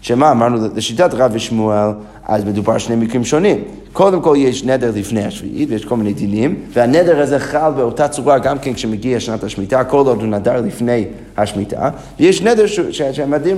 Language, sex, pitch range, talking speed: Hebrew, male, 115-155 Hz, 180 wpm